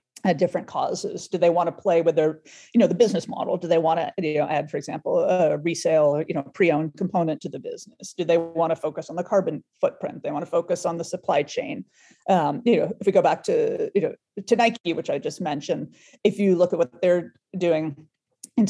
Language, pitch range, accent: English, 170-220 Hz, American